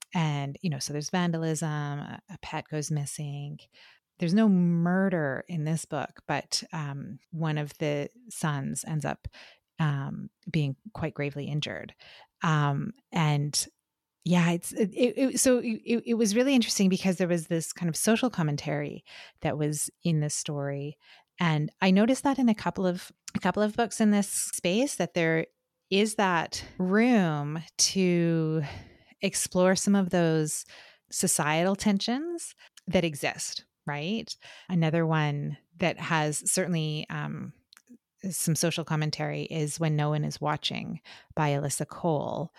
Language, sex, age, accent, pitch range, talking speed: English, female, 30-49, American, 150-195 Hz, 145 wpm